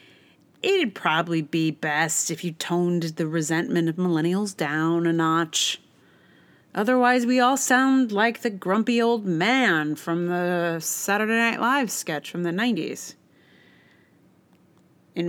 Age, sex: 30-49, female